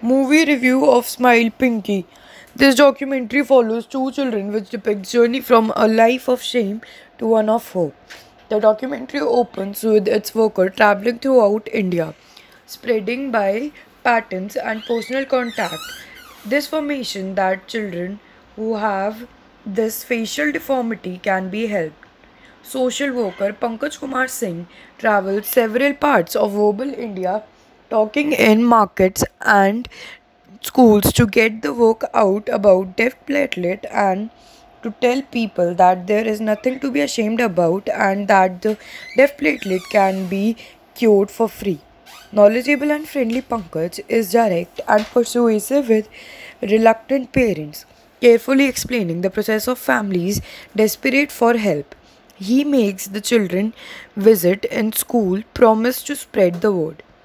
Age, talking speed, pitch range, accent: 20-39, 135 wpm, 205-255 Hz, Indian